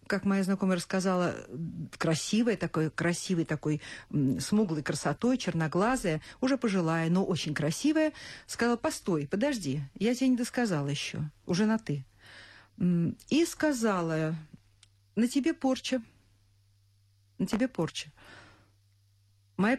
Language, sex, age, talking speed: Russian, female, 50-69, 110 wpm